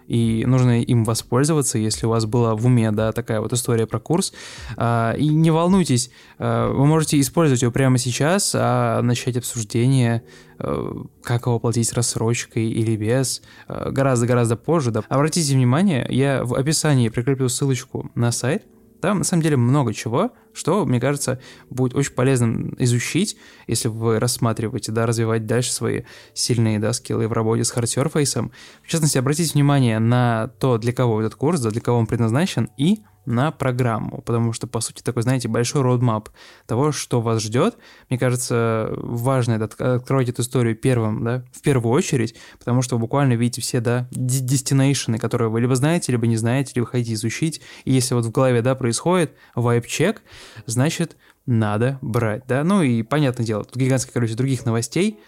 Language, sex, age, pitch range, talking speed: Russian, male, 20-39, 115-135 Hz, 165 wpm